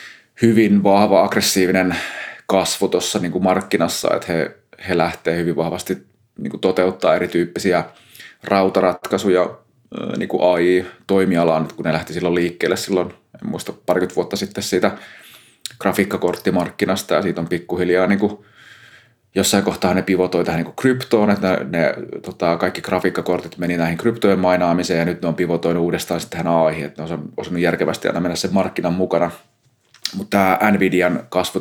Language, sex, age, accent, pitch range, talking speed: Finnish, male, 30-49, native, 85-100 Hz, 150 wpm